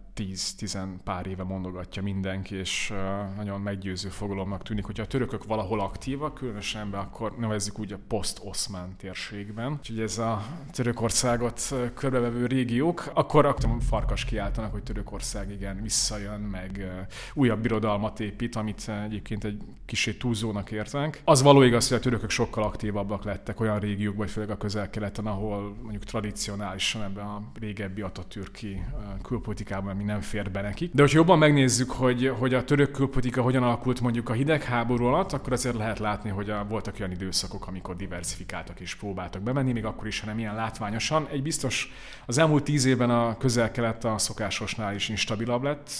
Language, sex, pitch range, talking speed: Hungarian, male, 100-125 Hz, 155 wpm